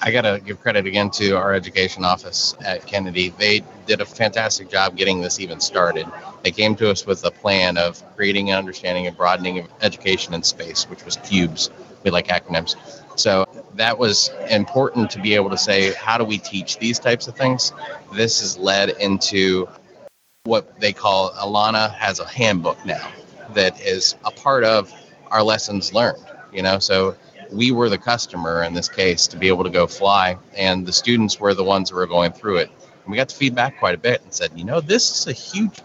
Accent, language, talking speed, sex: American, English, 205 wpm, male